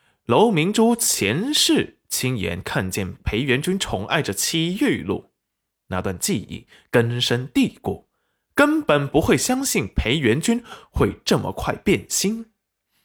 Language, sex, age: Chinese, male, 20-39